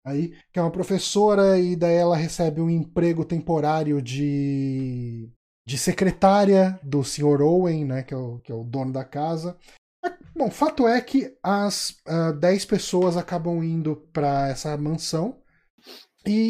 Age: 20-39